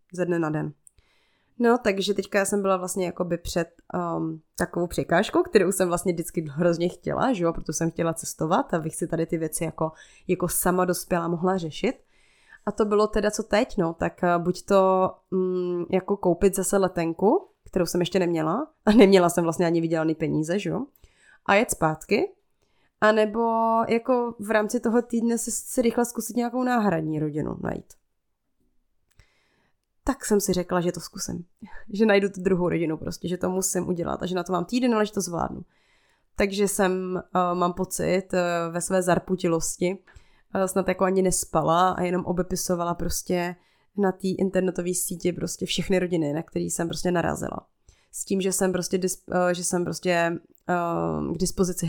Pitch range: 170-200 Hz